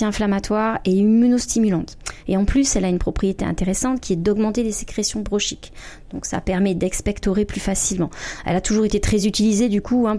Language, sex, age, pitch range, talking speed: French, female, 30-49, 165-215 Hz, 190 wpm